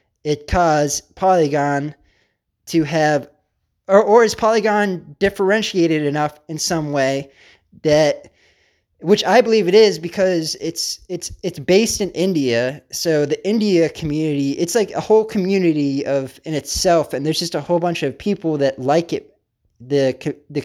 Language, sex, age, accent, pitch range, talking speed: English, male, 20-39, American, 140-170 Hz, 150 wpm